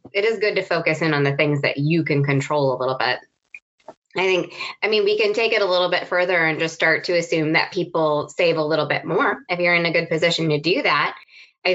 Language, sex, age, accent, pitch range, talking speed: English, female, 20-39, American, 145-180 Hz, 255 wpm